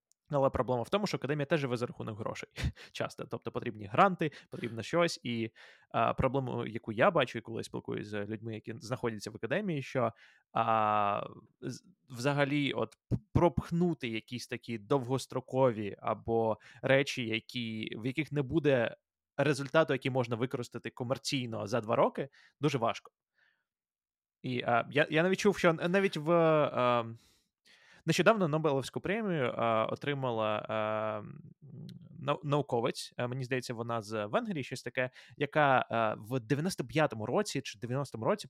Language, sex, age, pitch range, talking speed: Ukrainian, male, 20-39, 115-150 Hz, 140 wpm